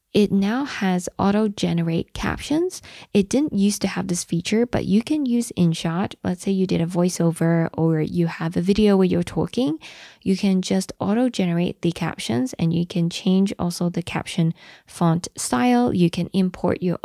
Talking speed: 175 wpm